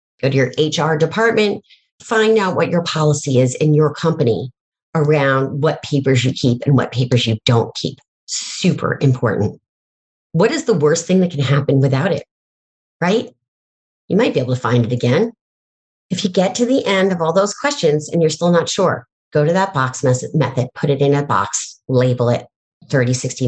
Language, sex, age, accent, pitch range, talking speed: English, female, 40-59, American, 125-160 Hz, 190 wpm